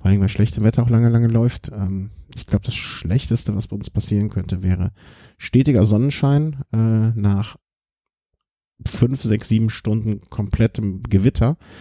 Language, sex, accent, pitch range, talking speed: German, male, German, 95-115 Hz, 130 wpm